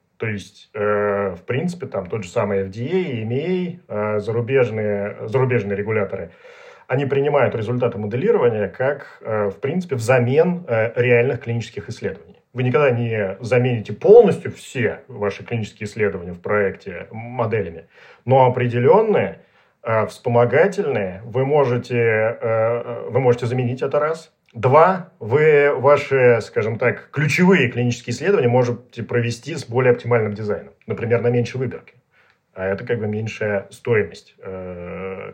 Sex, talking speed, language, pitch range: male, 120 wpm, Russian, 105-135 Hz